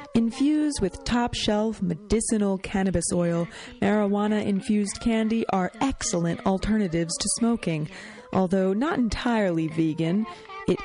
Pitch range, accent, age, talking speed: 190-275 Hz, American, 30-49, 100 wpm